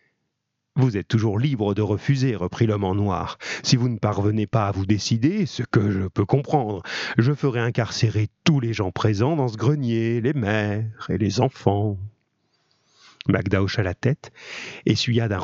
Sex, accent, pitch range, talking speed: male, French, 100-120 Hz, 170 wpm